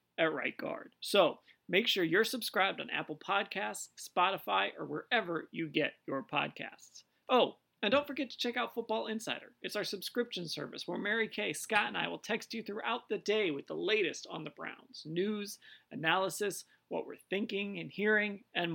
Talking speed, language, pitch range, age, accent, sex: 180 wpm, English, 165-215 Hz, 30-49, American, male